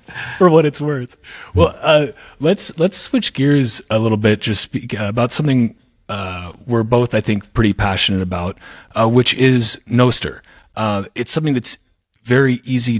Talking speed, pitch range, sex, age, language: 160 wpm, 95-120 Hz, male, 30-49, English